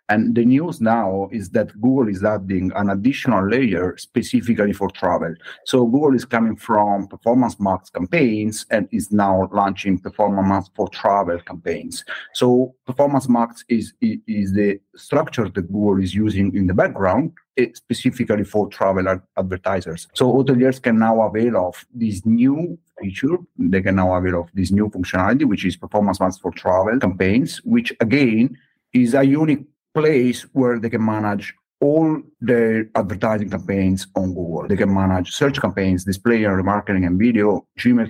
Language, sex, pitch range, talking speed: English, male, 95-125 Hz, 160 wpm